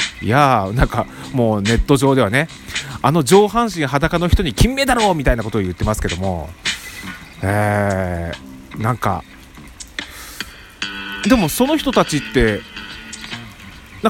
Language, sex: Japanese, male